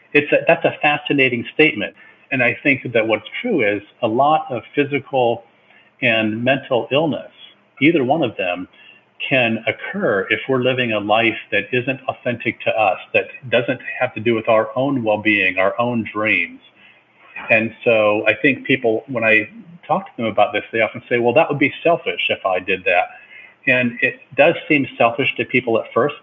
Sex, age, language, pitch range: male, 50-69, English, 105-130 Hz